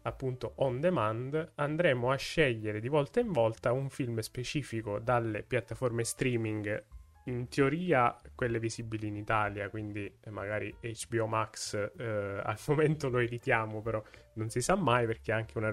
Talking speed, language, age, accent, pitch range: 155 wpm, Italian, 20-39, native, 110-135 Hz